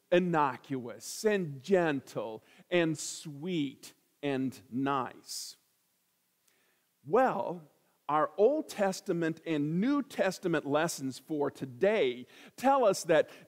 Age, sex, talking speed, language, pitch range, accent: 50-69, male, 90 wpm, English, 155-225 Hz, American